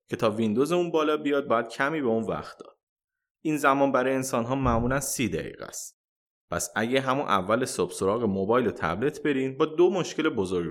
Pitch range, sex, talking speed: 110-150 Hz, male, 195 wpm